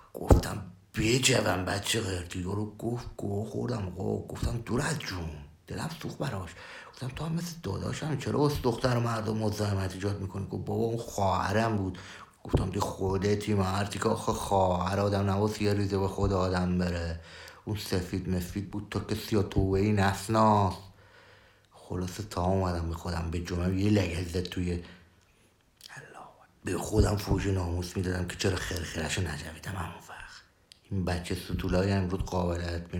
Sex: male